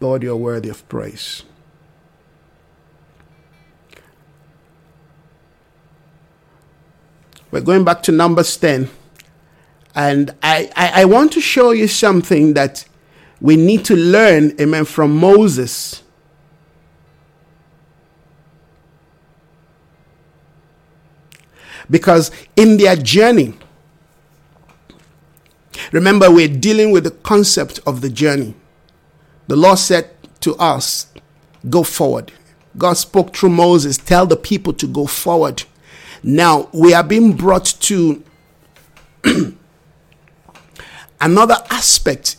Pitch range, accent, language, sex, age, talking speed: 155-190 Hz, Nigerian, English, male, 50-69, 95 wpm